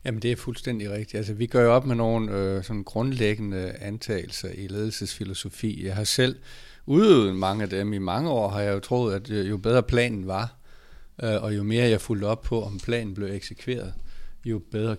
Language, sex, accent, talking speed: Danish, male, native, 205 wpm